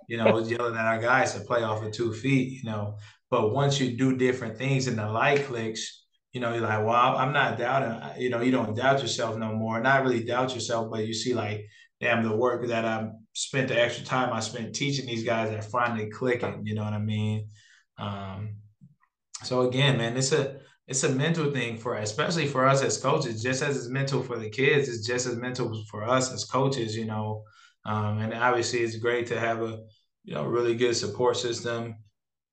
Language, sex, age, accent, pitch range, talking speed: English, male, 20-39, American, 110-125 Hz, 220 wpm